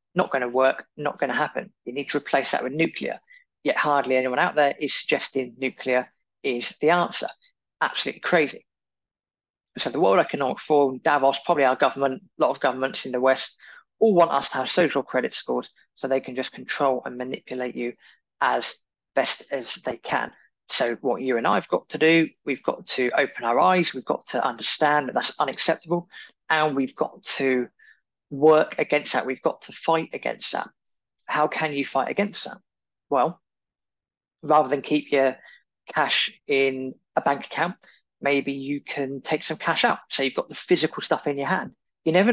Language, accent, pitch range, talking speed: English, British, 130-160 Hz, 190 wpm